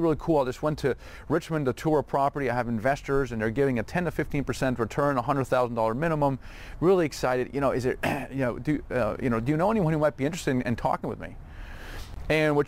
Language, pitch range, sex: English, 120-150 Hz, male